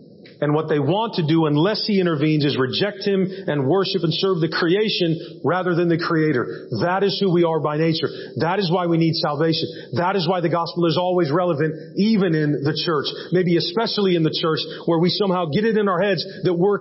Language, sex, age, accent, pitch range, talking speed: English, male, 40-59, American, 135-175 Hz, 220 wpm